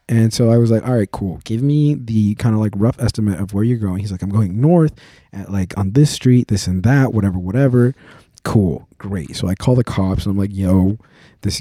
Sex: male